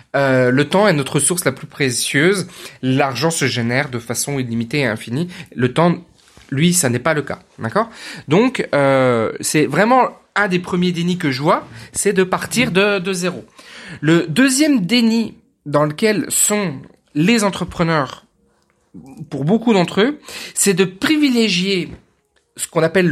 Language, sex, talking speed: French, male, 160 wpm